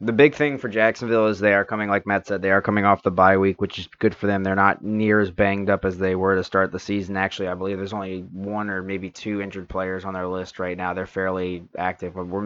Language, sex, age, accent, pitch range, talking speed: English, male, 20-39, American, 95-110 Hz, 280 wpm